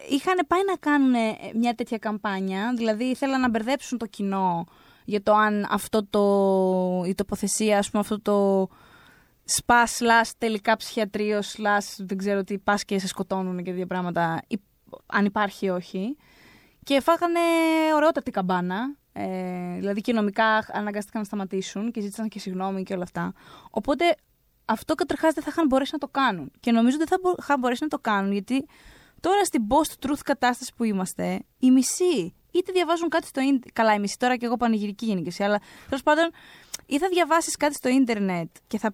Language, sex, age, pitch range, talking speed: Greek, female, 20-39, 200-285 Hz, 170 wpm